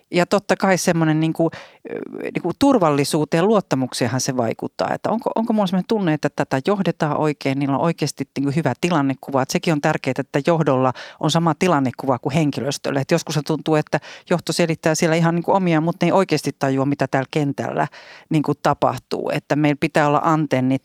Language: Finnish